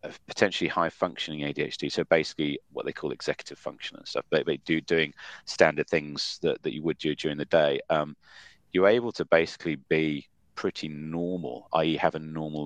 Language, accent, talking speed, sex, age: English, British, 180 wpm, male, 30-49